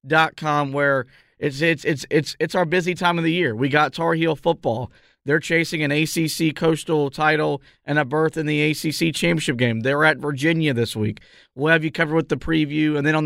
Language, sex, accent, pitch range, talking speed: English, male, American, 135-160 Hz, 215 wpm